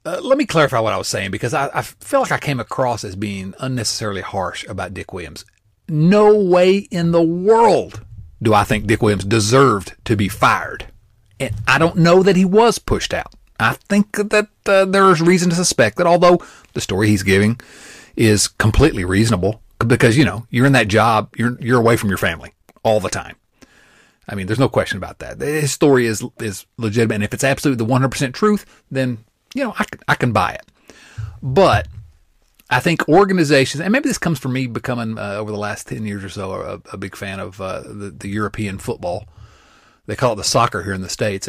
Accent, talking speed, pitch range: American, 210 wpm, 105-155 Hz